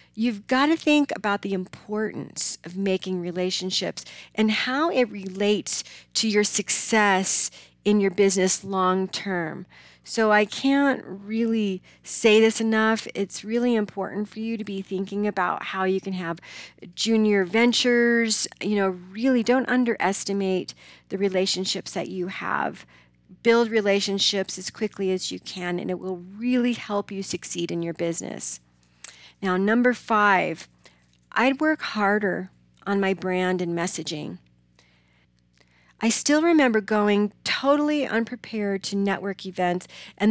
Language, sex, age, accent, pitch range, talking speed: English, female, 40-59, American, 180-220 Hz, 135 wpm